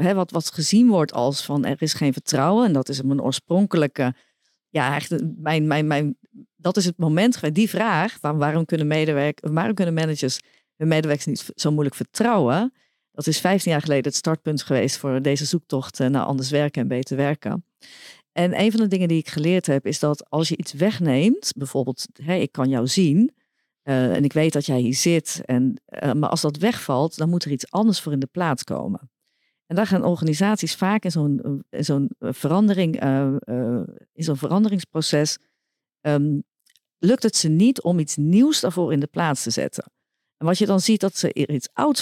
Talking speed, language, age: 200 wpm, Dutch, 50-69